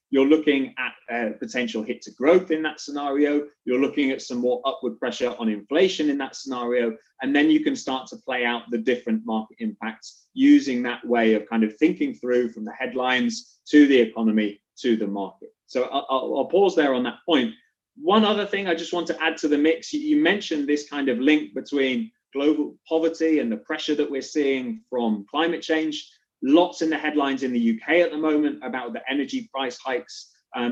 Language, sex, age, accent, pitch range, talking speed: English, male, 20-39, British, 125-170 Hz, 205 wpm